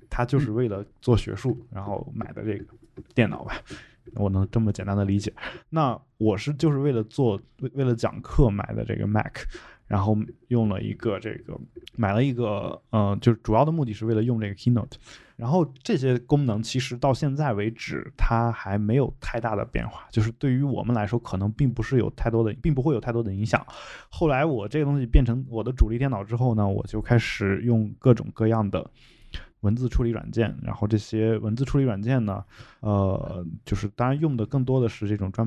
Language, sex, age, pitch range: Chinese, male, 20-39, 105-130 Hz